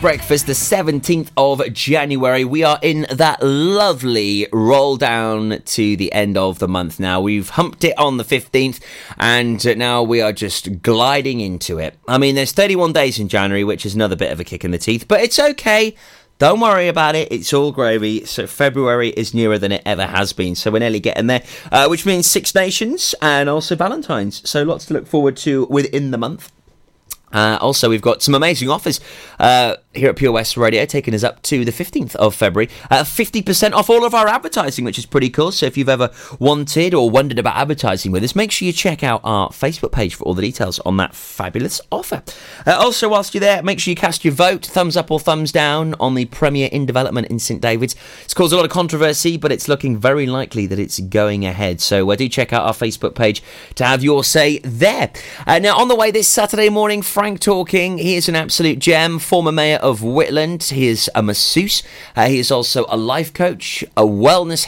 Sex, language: male, English